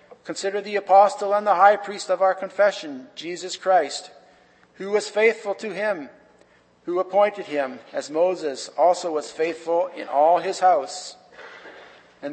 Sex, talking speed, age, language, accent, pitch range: male, 145 wpm, 50-69, English, American, 165-200 Hz